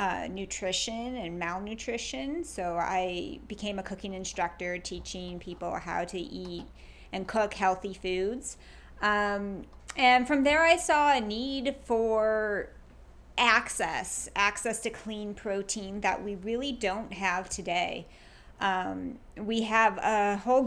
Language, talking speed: English, 130 wpm